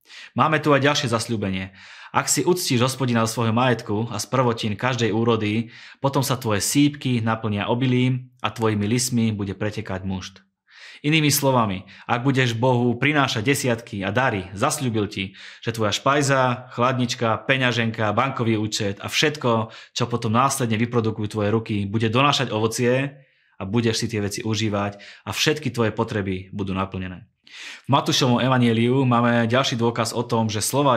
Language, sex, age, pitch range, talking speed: Slovak, male, 20-39, 105-130 Hz, 155 wpm